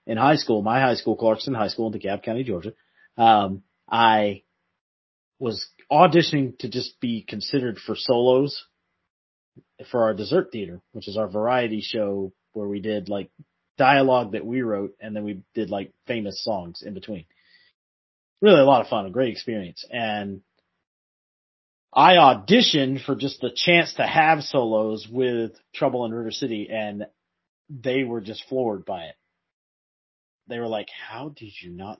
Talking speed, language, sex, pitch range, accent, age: 160 wpm, English, male, 100-125 Hz, American, 30-49